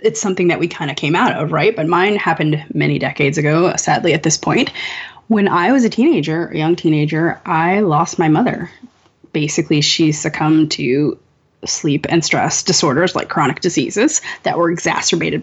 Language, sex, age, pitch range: English, female, 20-39, 160-195 Hz